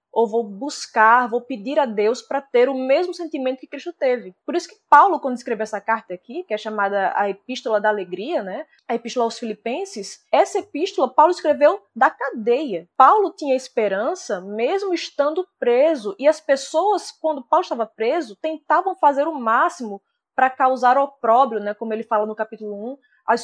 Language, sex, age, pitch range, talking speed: Portuguese, female, 20-39, 220-310 Hz, 180 wpm